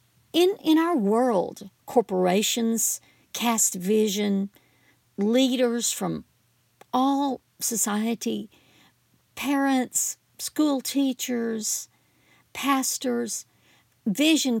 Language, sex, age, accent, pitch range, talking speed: English, female, 50-69, American, 190-245 Hz, 65 wpm